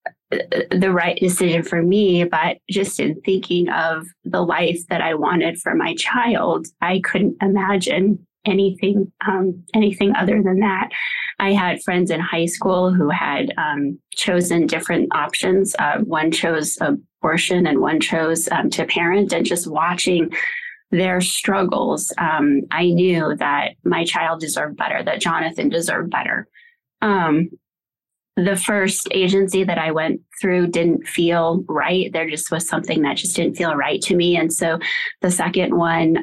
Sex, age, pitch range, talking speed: female, 20-39, 170-195 Hz, 155 wpm